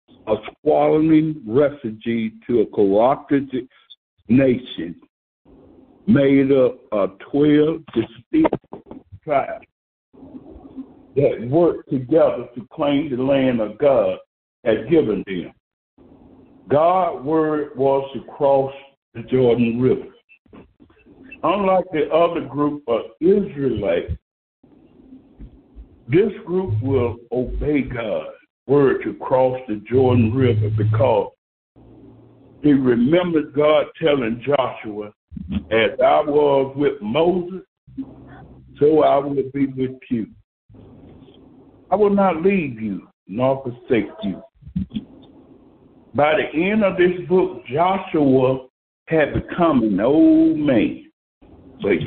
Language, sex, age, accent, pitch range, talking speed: English, male, 60-79, American, 125-190 Hz, 100 wpm